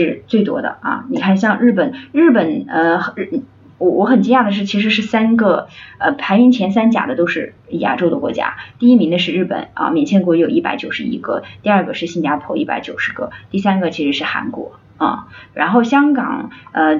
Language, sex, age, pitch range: Chinese, female, 20-39, 170-245 Hz